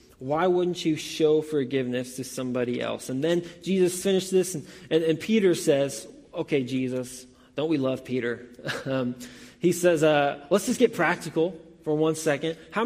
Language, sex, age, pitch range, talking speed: English, male, 20-39, 130-175 Hz, 170 wpm